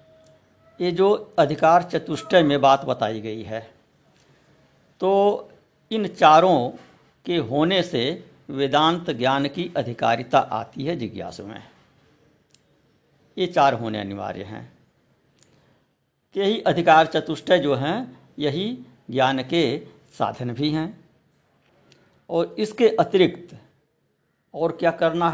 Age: 60-79